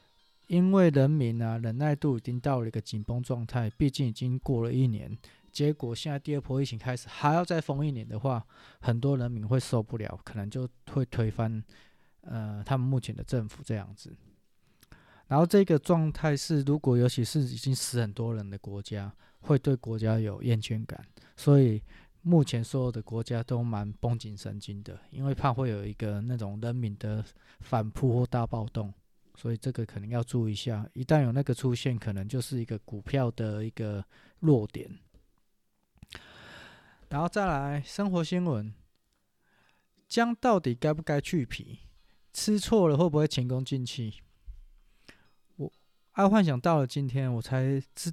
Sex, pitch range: male, 110-145 Hz